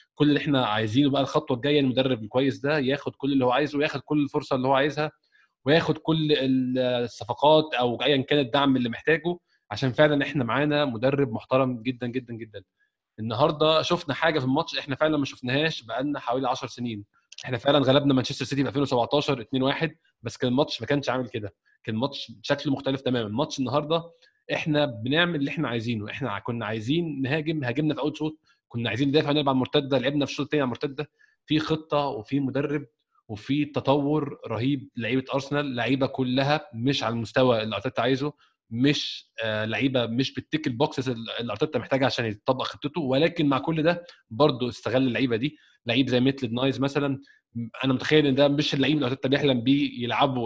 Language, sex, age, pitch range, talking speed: Arabic, male, 20-39, 125-145 Hz, 175 wpm